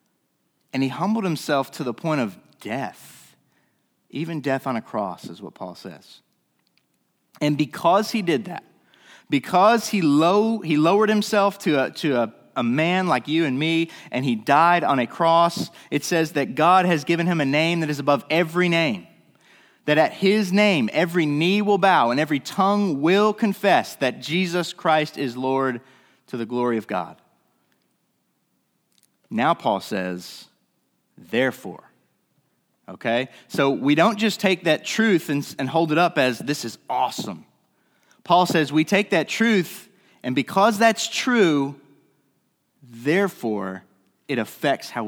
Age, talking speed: 30-49, 155 wpm